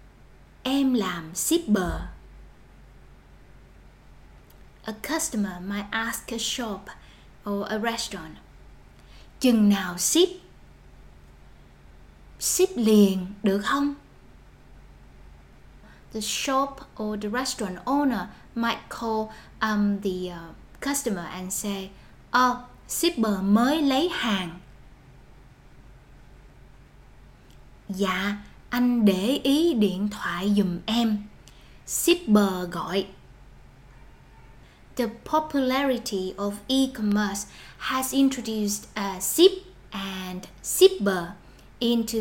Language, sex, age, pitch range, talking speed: Vietnamese, female, 20-39, 185-245 Hz, 80 wpm